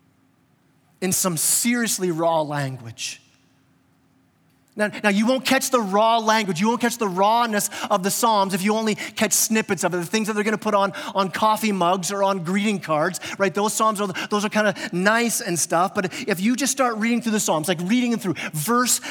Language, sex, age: English, male, 30-49